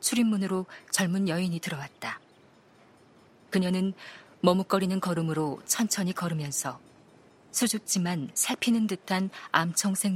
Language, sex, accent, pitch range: Korean, female, native, 155-195 Hz